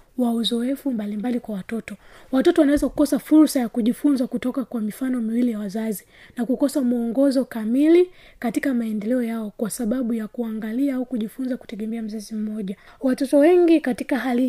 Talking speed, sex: 150 wpm, female